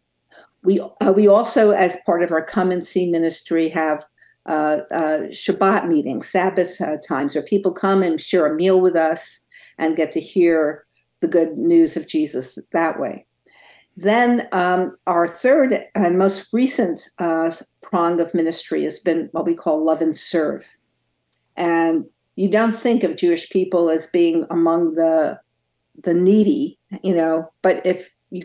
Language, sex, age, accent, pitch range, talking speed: English, female, 60-79, American, 165-205 Hz, 160 wpm